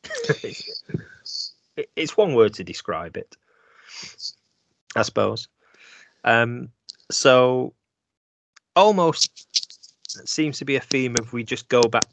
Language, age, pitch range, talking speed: English, 20-39, 110-135 Hz, 105 wpm